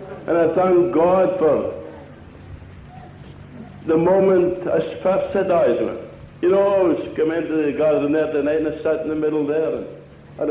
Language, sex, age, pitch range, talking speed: English, male, 60-79, 165-195 Hz, 160 wpm